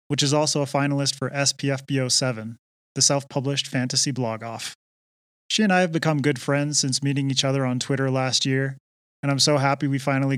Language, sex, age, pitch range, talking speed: English, male, 20-39, 130-145 Hz, 185 wpm